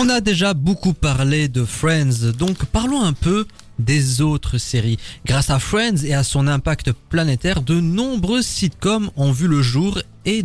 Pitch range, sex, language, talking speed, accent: 135-195 Hz, male, French, 170 wpm, French